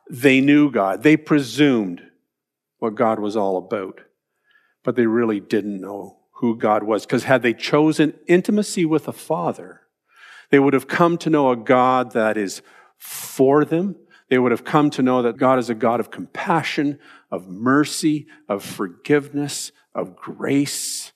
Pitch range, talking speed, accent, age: 125-170 Hz, 160 wpm, American, 50-69